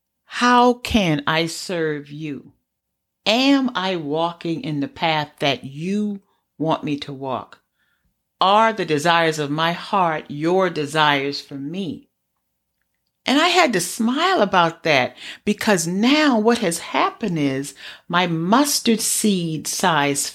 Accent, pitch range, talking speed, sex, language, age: American, 155-225 Hz, 130 wpm, female, English, 50-69